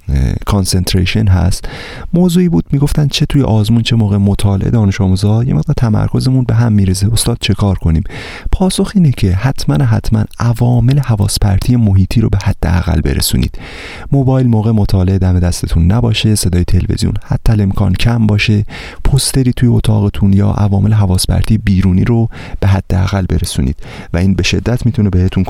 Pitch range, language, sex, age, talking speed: 85-110 Hz, Persian, male, 30-49, 155 wpm